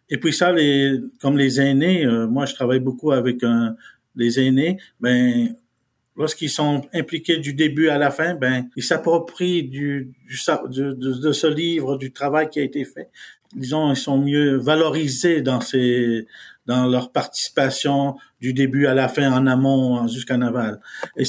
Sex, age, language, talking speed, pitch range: male, 50-69, French, 170 wpm, 130-160 Hz